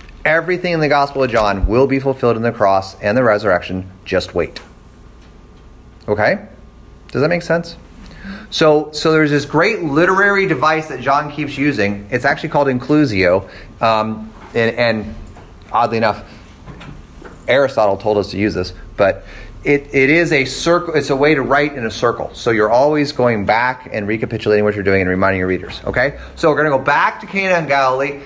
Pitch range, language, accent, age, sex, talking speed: 110-175 Hz, English, American, 30-49, male, 185 wpm